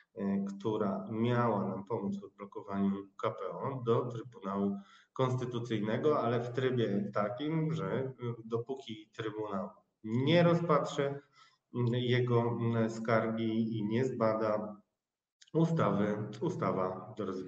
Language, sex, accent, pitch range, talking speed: Polish, male, native, 105-125 Hz, 95 wpm